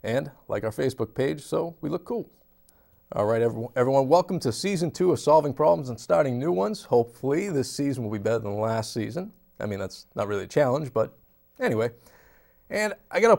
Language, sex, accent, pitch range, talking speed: English, male, American, 105-150 Hz, 195 wpm